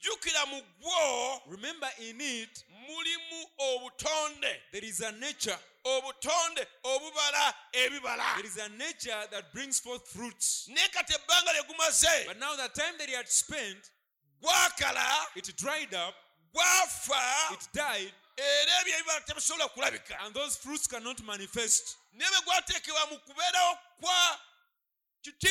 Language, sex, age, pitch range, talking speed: English, male, 30-49, 245-330 Hz, 80 wpm